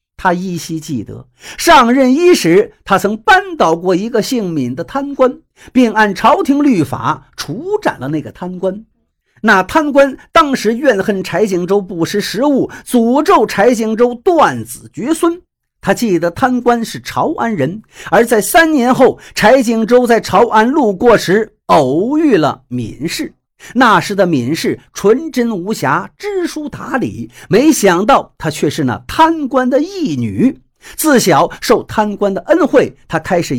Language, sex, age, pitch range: Chinese, male, 50-69, 180-290 Hz